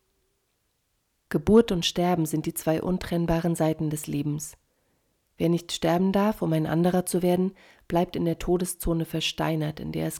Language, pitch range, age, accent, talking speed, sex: German, 150-180 Hz, 40-59, German, 160 wpm, female